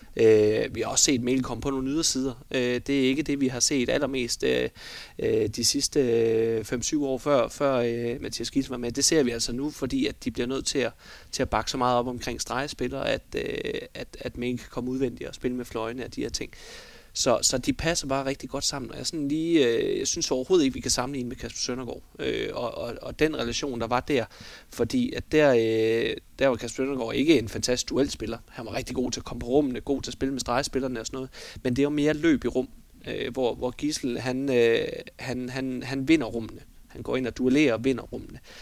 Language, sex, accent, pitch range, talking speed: Danish, male, native, 120-140 Hz, 230 wpm